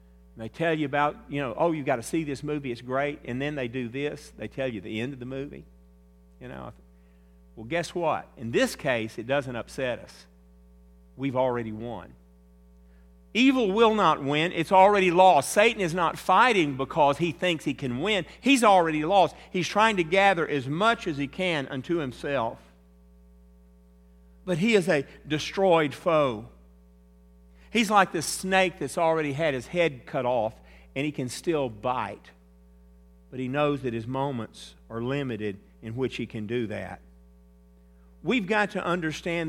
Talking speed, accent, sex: 175 wpm, American, male